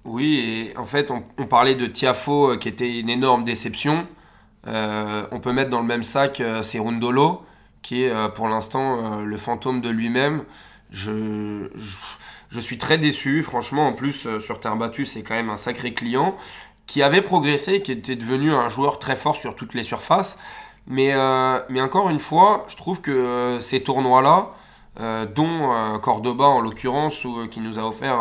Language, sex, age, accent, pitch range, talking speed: French, male, 20-39, French, 115-140 Hz, 195 wpm